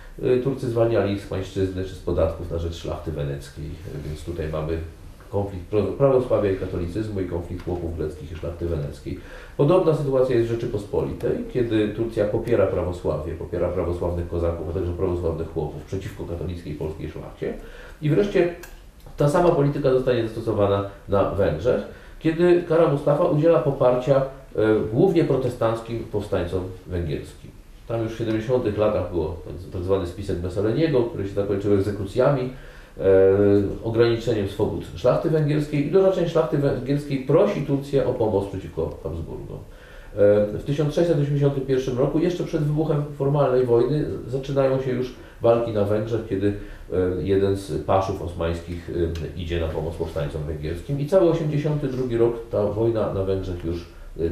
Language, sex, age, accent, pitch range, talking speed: Polish, male, 40-59, native, 85-130 Hz, 145 wpm